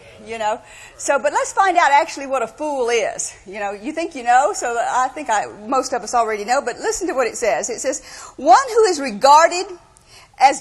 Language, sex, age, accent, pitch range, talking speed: English, female, 50-69, American, 265-365 Hz, 225 wpm